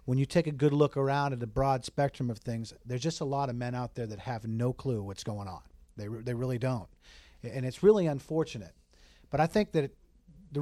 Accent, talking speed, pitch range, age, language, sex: American, 245 wpm, 115-140 Hz, 40-59, English, male